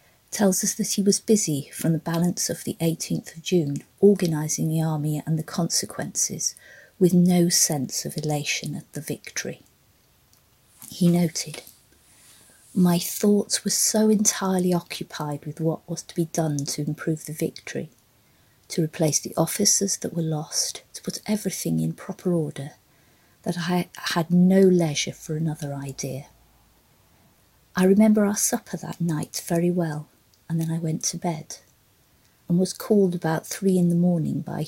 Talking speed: 155 wpm